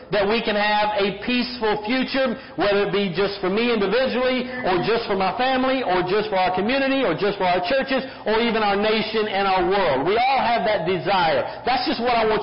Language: English